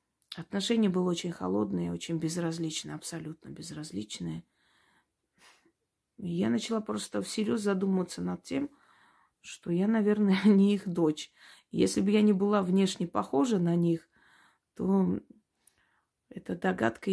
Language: Russian